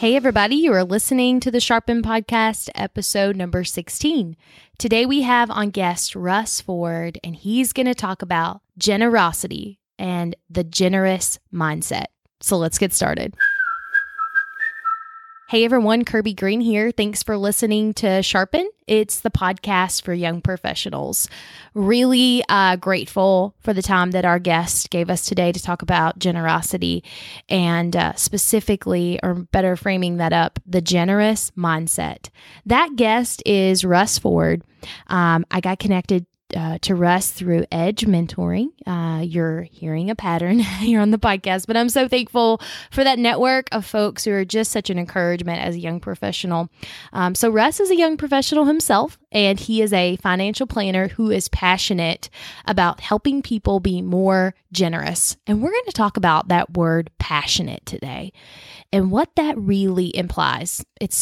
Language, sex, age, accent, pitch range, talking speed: English, female, 20-39, American, 175-225 Hz, 155 wpm